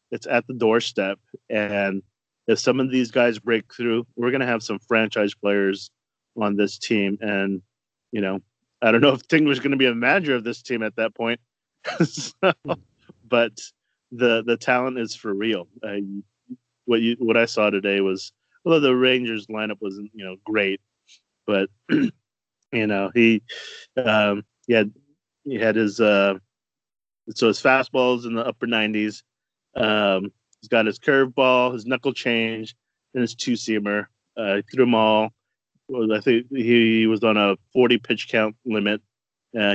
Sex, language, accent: male, English, American